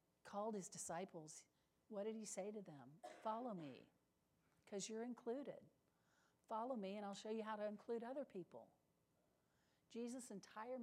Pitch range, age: 190-245 Hz, 50-69